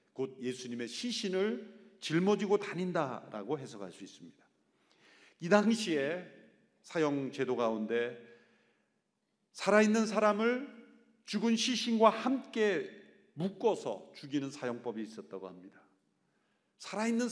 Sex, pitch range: male, 145-220 Hz